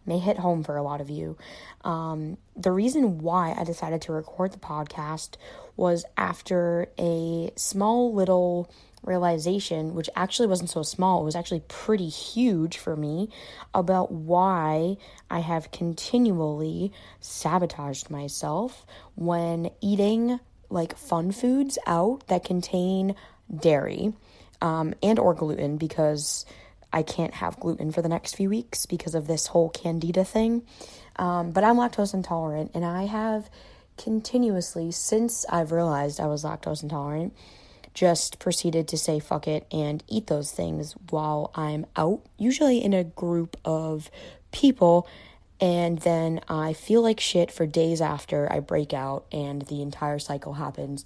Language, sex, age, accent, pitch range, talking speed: English, female, 20-39, American, 155-190 Hz, 145 wpm